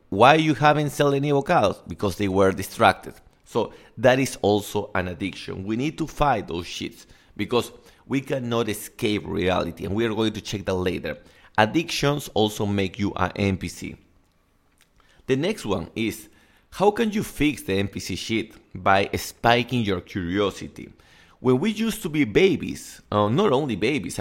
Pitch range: 95-130 Hz